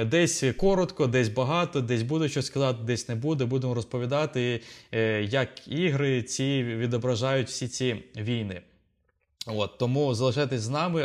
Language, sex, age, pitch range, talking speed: Ukrainian, male, 20-39, 115-140 Hz, 135 wpm